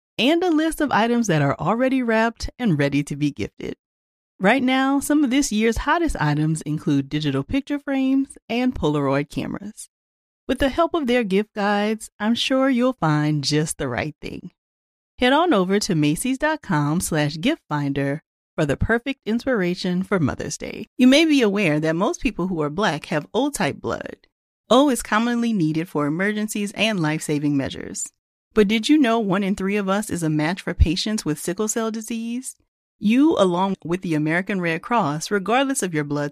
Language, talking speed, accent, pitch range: English, 180 wpm, American, 150-235 Hz